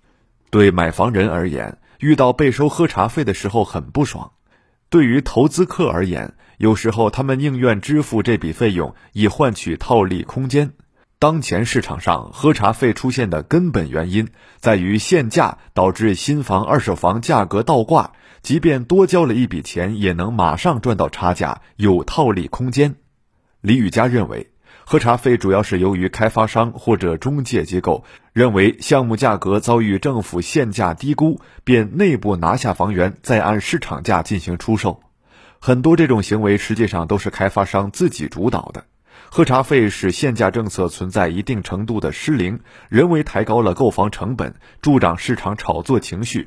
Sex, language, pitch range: male, Chinese, 95-130 Hz